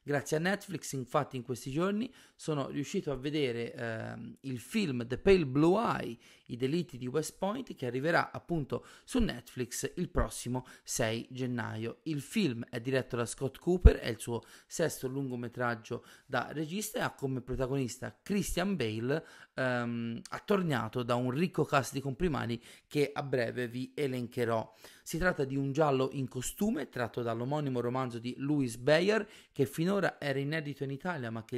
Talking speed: 165 wpm